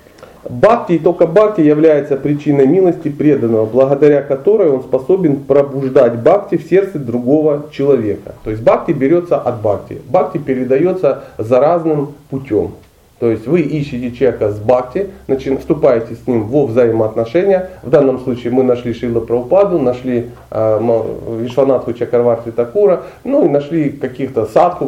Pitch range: 115-150 Hz